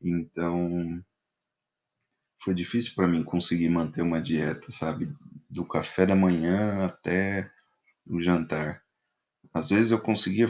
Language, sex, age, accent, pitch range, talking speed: Portuguese, male, 20-39, Brazilian, 85-105 Hz, 120 wpm